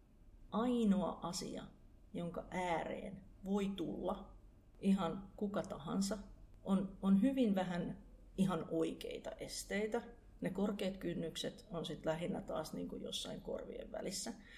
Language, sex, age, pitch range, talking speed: Finnish, female, 40-59, 165-215 Hz, 110 wpm